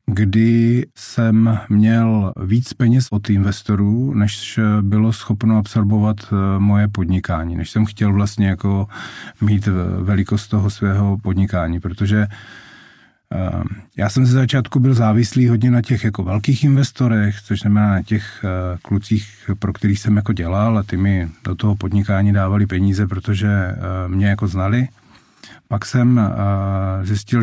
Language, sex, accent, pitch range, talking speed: Czech, male, native, 100-115 Hz, 135 wpm